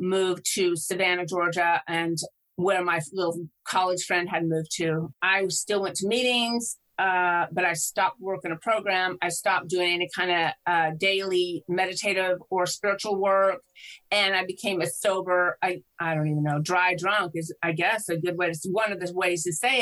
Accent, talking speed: American, 185 wpm